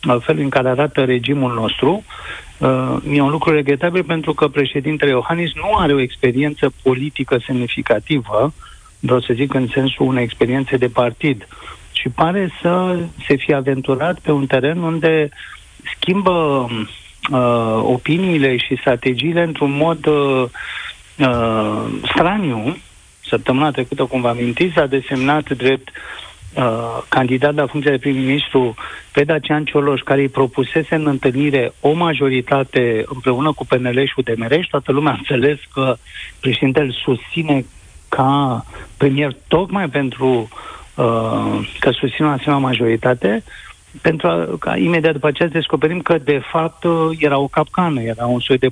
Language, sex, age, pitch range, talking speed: Romanian, male, 50-69, 125-150 Hz, 135 wpm